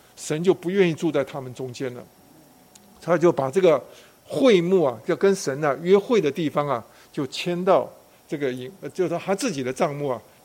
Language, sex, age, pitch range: Chinese, male, 50-69, 140-185 Hz